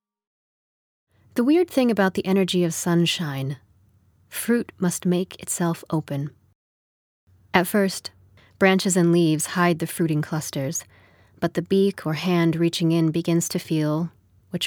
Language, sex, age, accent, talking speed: English, female, 30-49, American, 135 wpm